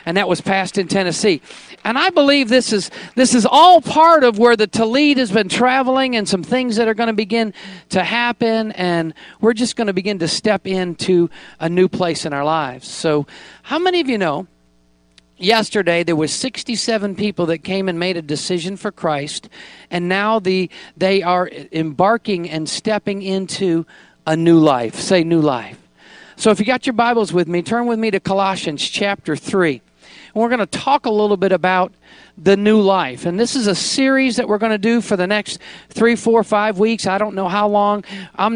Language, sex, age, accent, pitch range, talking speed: English, male, 50-69, American, 175-230 Hz, 200 wpm